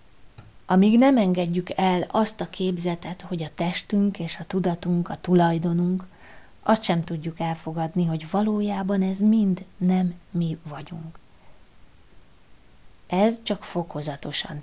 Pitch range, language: 155-190 Hz, Hungarian